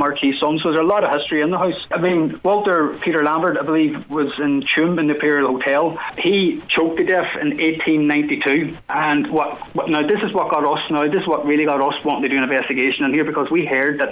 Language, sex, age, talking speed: English, male, 20-39, 245 wpm